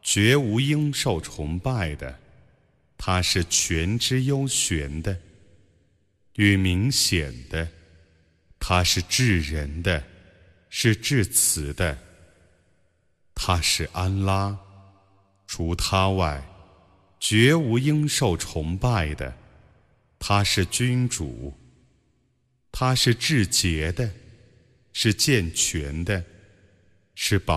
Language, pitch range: Arabic, 80-115 Hz